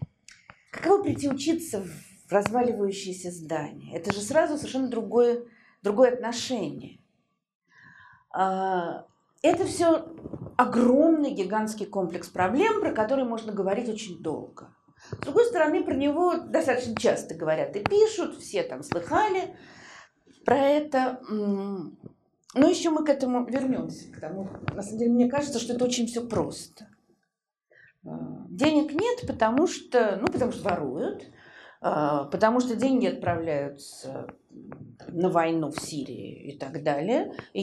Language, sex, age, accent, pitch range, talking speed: Russian, female, 40-59, native, 200-305 Hz, 125 wpm